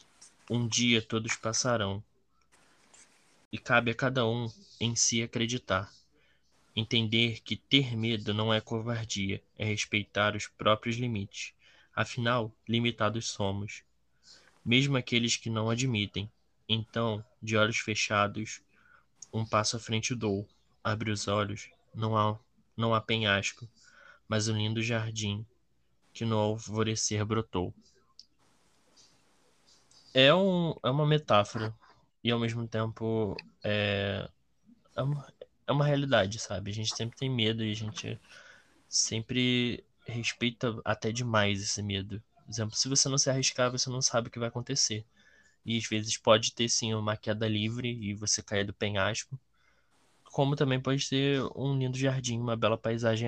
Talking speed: 140 wpm